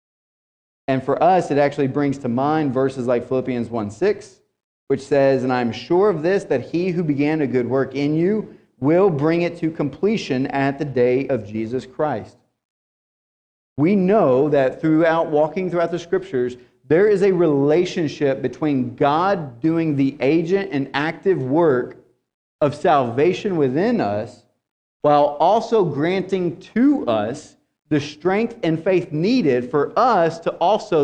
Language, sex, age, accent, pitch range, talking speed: English, male, 40-59, American, 140-185 Hz, 150 wpm